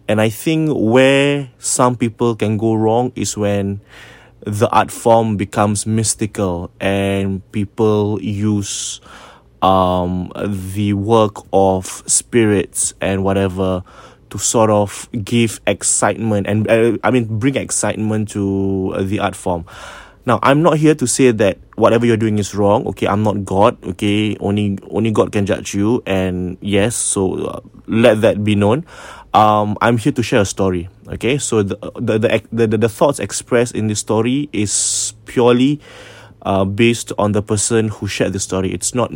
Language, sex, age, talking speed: English, male, 20-39, 160 wpm